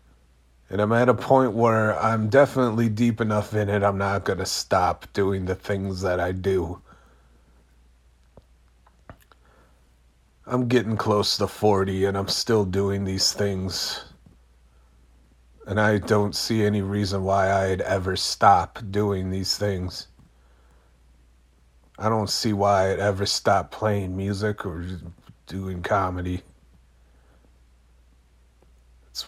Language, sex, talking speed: English, male, 125 wpm